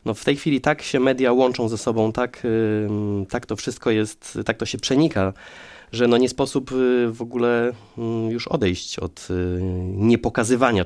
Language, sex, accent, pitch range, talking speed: Polish, male, native, 95-120 Hz, 160 wpm